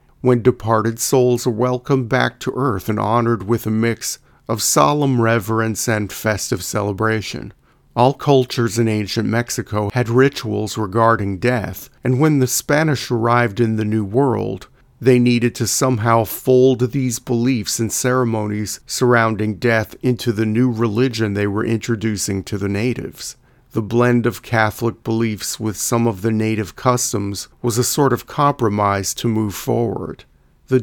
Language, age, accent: English, 50-69, American